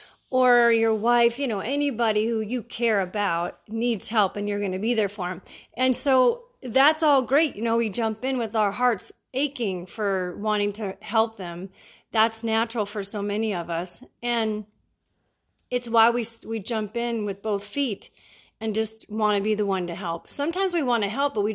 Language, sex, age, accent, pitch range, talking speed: English, female, 30-49, American, 200-235 Hz, 200 wpm